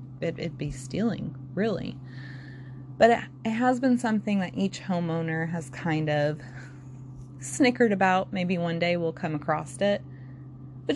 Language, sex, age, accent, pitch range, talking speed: English, female, 20-39, American, 145-230 Hz, 135 wpm